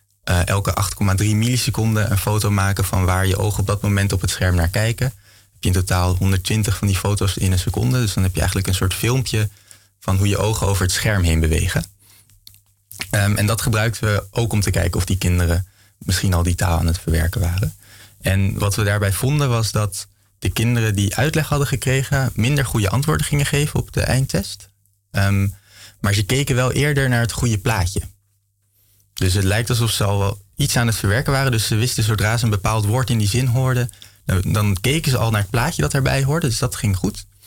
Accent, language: Dutch, Dutch